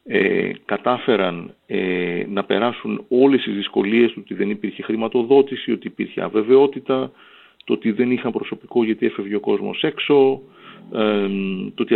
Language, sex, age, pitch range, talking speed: Greek, male, 40-59, 105-135 Hz, 140 wpm